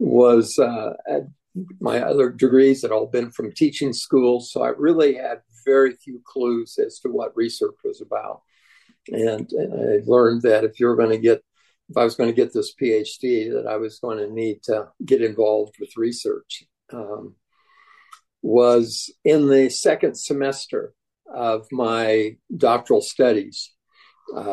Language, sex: English, male